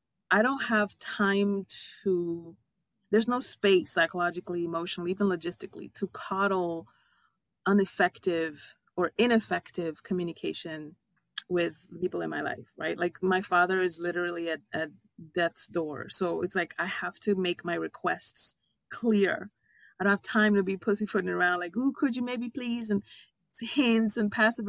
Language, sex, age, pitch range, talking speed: English, female, 30-49, 175-215 Hz, 150 wpm